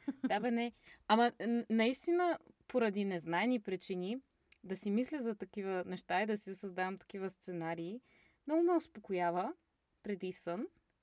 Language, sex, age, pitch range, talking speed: Bulgarian, female, 20-39, 190-245 Hz, 130 wpm